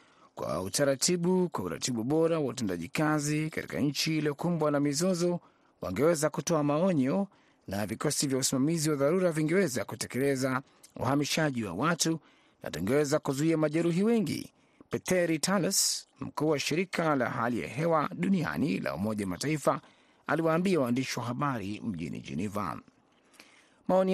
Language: Swahili